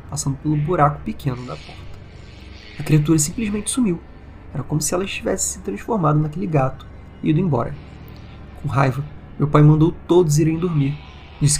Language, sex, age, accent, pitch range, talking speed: Portuguese, male, 30-49, Brazilian, 120-155 Hz, 160 wpm